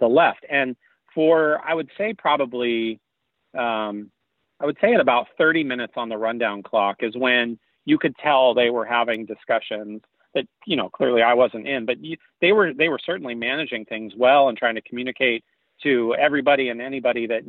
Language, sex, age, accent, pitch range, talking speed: English, male, 40-59, American, 115-135 Hz, 190 wpm